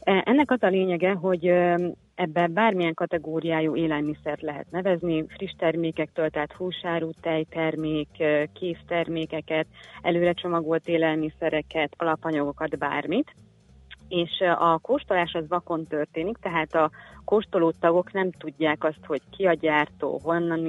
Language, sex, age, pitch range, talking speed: Hungarian, female, 30-49, 155-175 Hz, 115 wpm